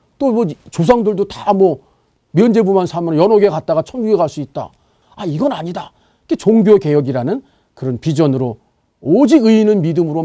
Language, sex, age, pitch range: Korean, male, 40-59, 135-210 Hz